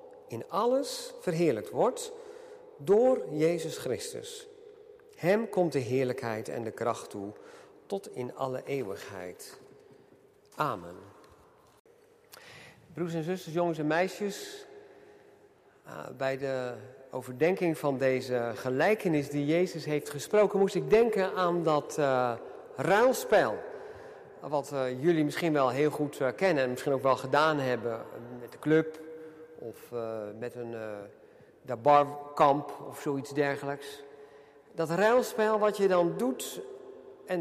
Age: 50-69